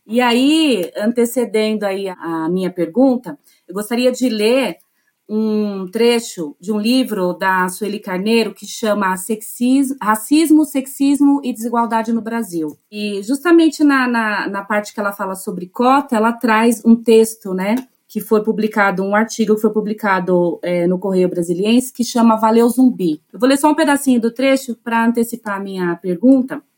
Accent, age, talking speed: Brazilian, 30-49, 165 wpm